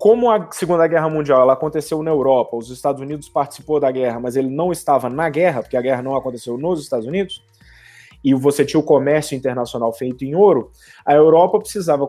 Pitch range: 125-180 Hz